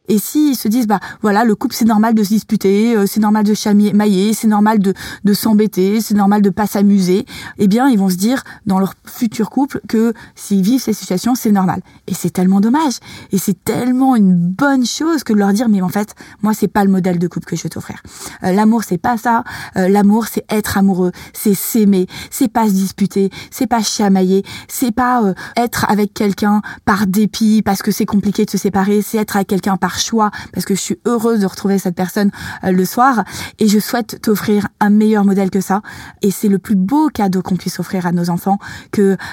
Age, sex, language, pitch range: 20-39, female, French, 190-220 Hz